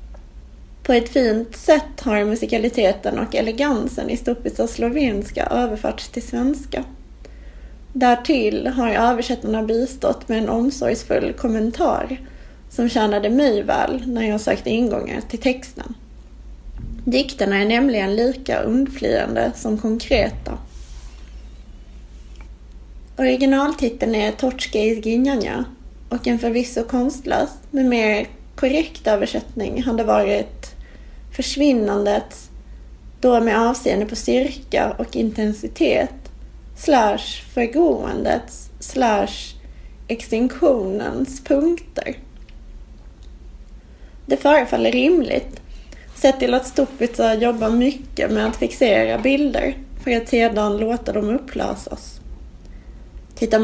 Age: 30-49